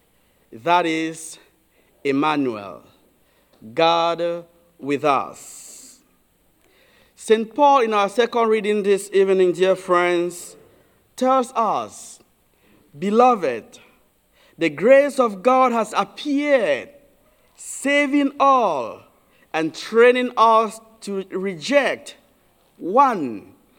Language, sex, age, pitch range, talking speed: English, male, 50-69, 180-250 Hz, 85 wpm